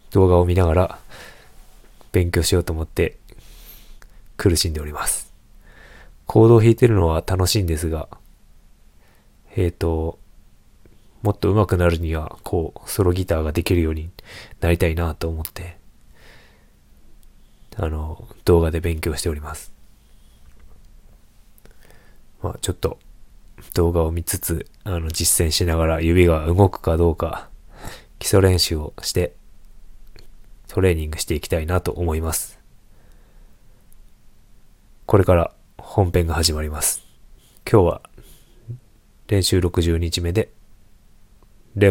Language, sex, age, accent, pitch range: Japanese, male, 20-39, native, 80-95 Hz